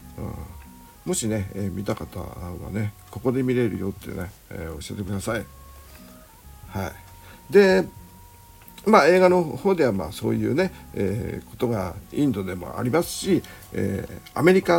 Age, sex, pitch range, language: 50-69, male, 95-120 Hz, Japanese